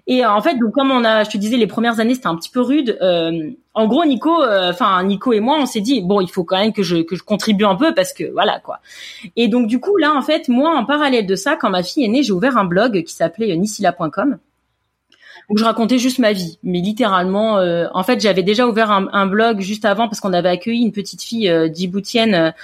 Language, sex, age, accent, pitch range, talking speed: French, female, 30-49, French, 180-245 Hz, 260 wpm